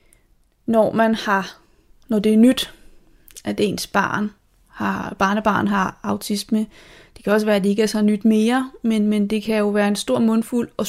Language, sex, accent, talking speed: Danish, female, native, 195 wpm